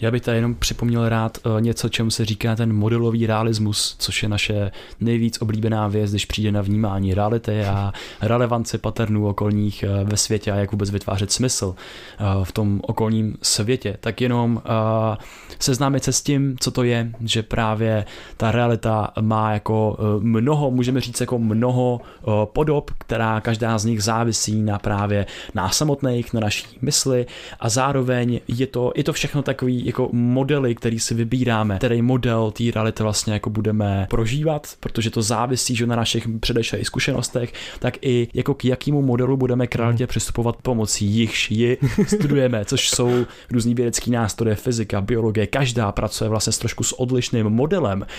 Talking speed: 160 wpm